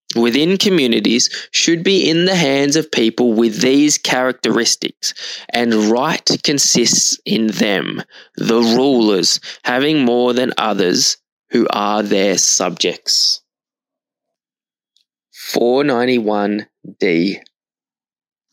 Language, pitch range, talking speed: English, 110-140 Hz, 90 wpm